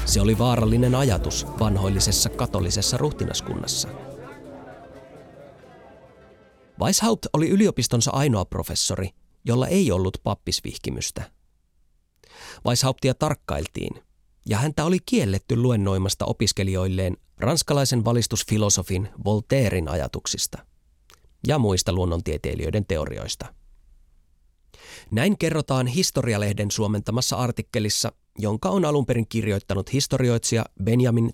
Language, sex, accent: Finnish, male, native